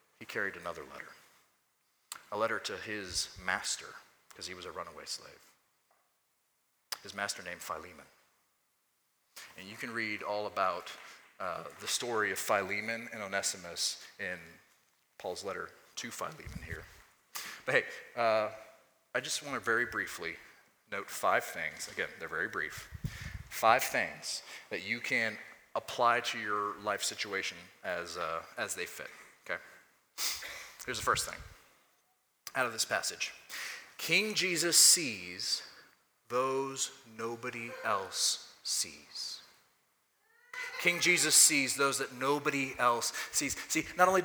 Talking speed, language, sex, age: 130 wpm, English, male, 30-49